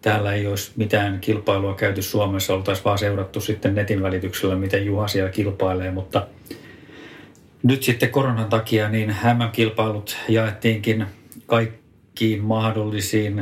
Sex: male